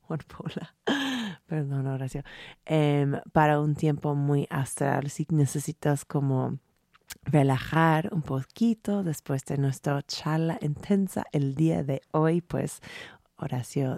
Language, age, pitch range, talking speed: Spanish, 30-49, 140-170 Hz, 105 wpm